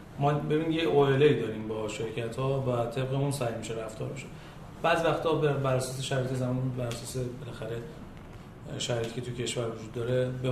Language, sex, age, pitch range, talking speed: Persian, male, 30-49, 125-150 Hz, 155 wpm